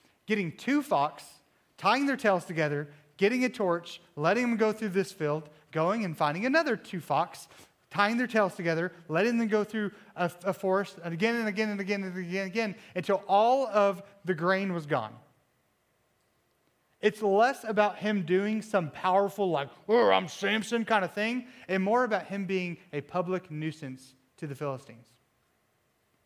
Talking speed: 170 wpm